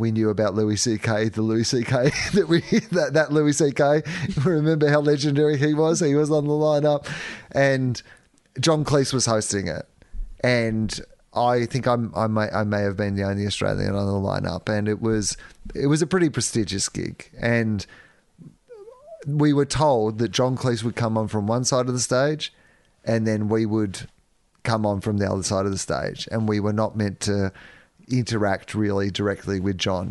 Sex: male